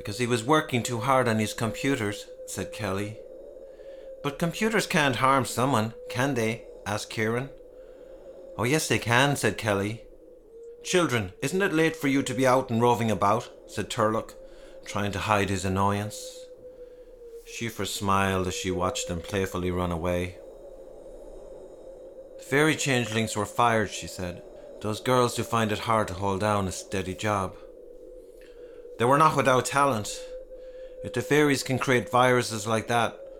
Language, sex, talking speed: English, male, 155 wpm